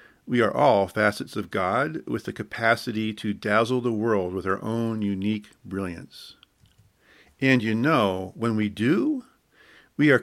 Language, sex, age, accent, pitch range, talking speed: English, male, 50-69, American, 105-135 Hz, 155 wpm